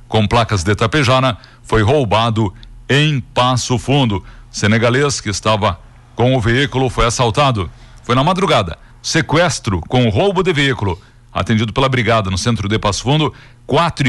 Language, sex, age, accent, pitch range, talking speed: Portuguese, male, 60-79, Brazilian, 115-140 Hz, 145 wpm